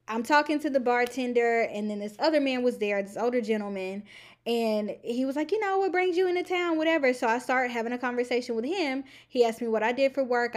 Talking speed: 245 wpm